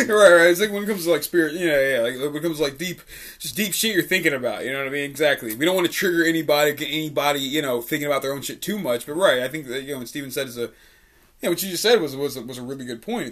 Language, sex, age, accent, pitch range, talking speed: English, male, 20-39, American, 125-155 Hz, 335 wpm